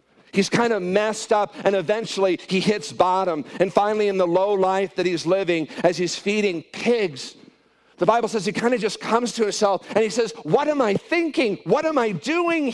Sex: male